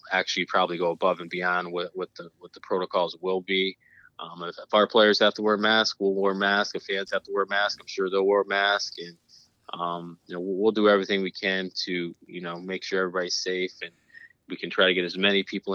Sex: male